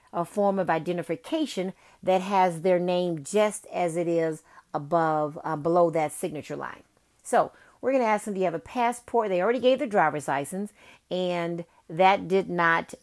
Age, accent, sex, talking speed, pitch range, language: 40-59, American, female, 175 wpm, 170-215 Hz, English